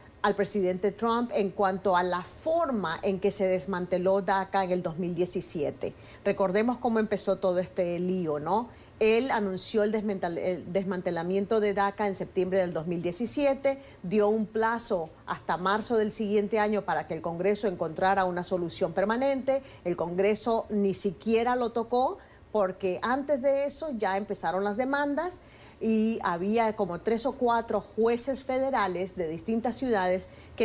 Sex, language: female, Spanish